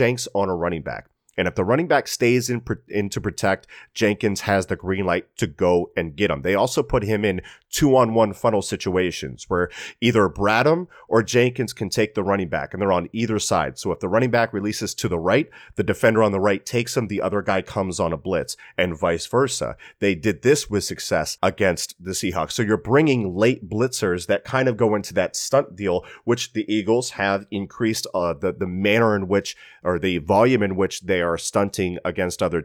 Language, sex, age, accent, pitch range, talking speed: English, male, 30-49, American, 95-115 Hz, 215 wpm